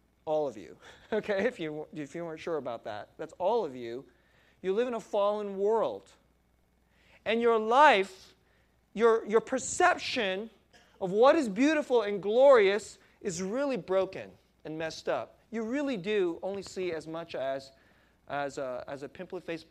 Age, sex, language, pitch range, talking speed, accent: 30-49, male, English, 140-225 Hz, 160 wpm, American